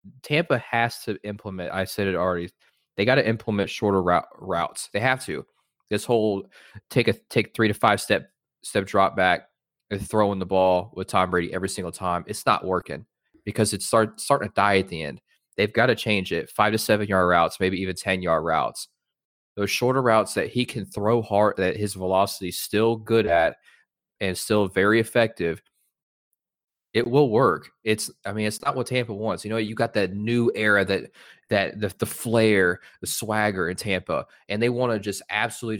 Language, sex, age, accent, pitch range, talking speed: English, male, 20-39, American, 95-115 Hz, 200 wpm